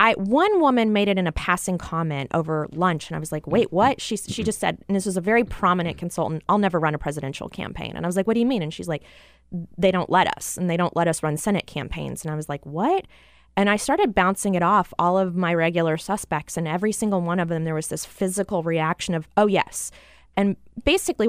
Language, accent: English, American